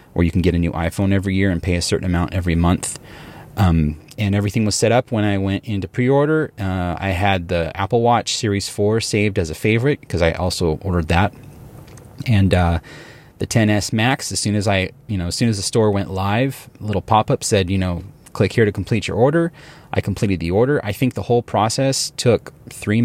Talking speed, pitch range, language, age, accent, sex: 220 wpm, 90-120 Hz, English, 30-49, American, male